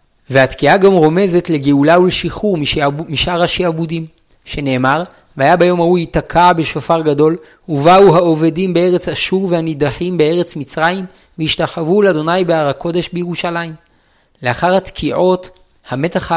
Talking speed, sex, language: 110 wpm, male, Hebrew